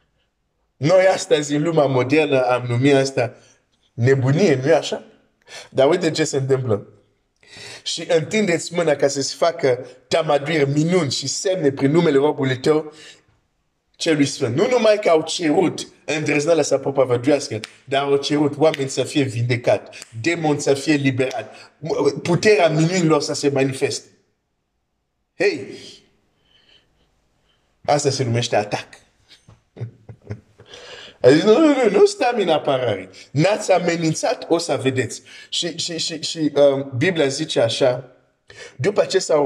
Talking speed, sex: 125 wpm, male